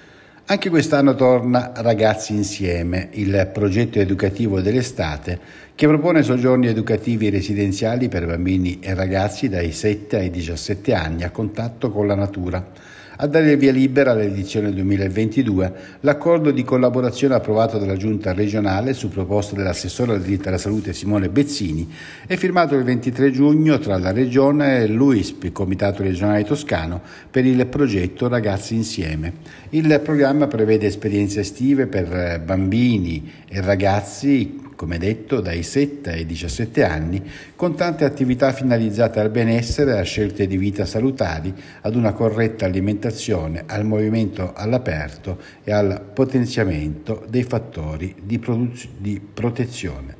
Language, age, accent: Italian, 60-79, native